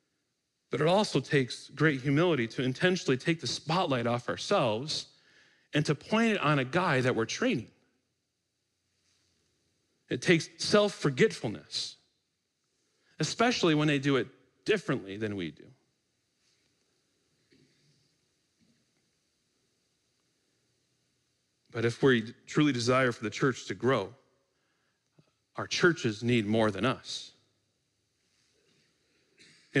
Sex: male